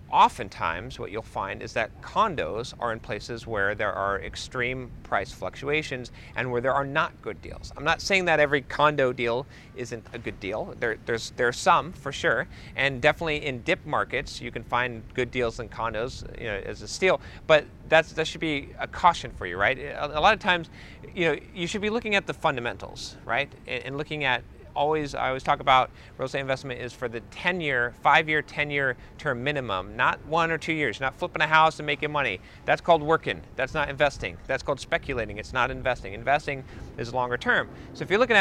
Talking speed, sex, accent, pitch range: 215 wpm, male, American, 120-155 Hz